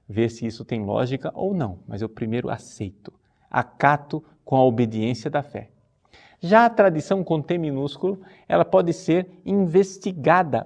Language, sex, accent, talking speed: Portuguese, male, Brazilian, 150 wpm